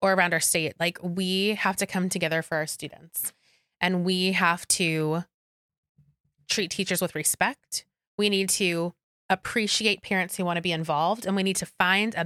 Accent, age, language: American, 20-39, English